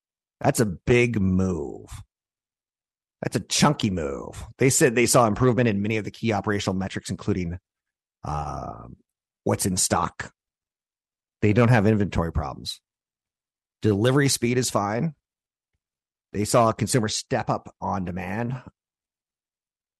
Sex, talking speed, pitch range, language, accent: male, 125 wpm, 90-115 Hz, English, American